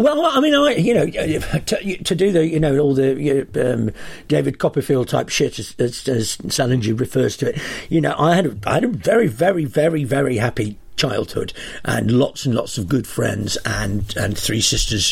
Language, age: English, 50-69